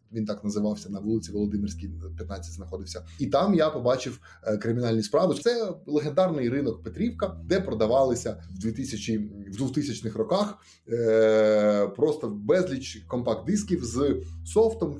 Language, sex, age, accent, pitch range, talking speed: Ukrainian, male, 20-39, native, 105-155 Hz, 120 wpm